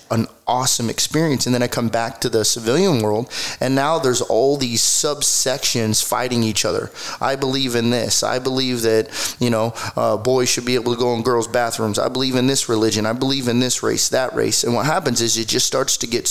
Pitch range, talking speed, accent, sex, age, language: 110-130 Hz, 220 wpm, American, male, 30-49, English